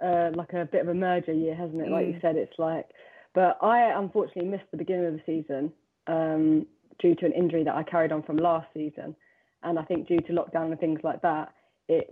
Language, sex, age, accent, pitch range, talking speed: English, female, 20-39, British, 165-185 Hz, 235 wpm